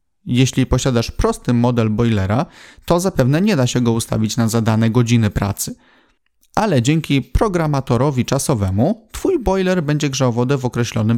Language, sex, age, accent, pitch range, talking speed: Polish, male, 30-49, native, 115-160 Hz, 145 wpm